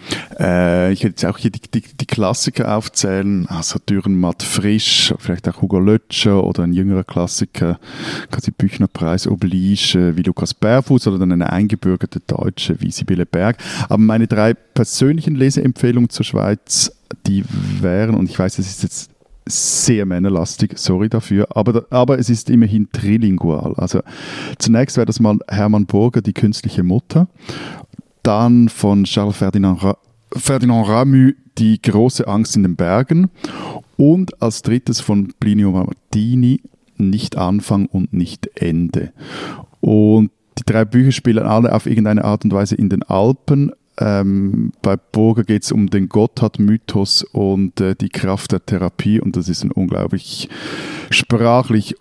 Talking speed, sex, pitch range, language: 150 wpm, male, 95-120 Hz, German